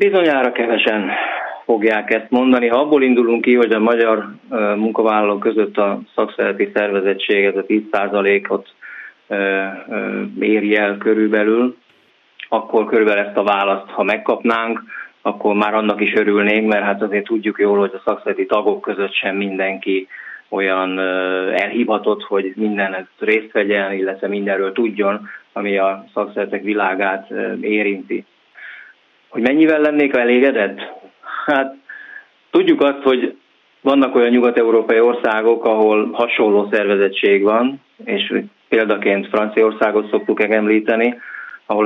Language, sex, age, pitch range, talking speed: Hungarian, male, 20-39, 100-120 Hz, 120 wpm